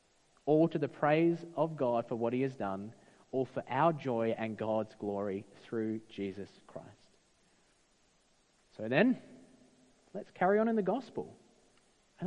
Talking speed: 145 wpm